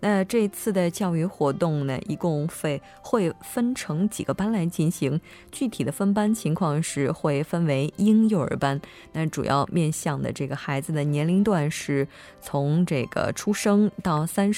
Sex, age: female, 20-39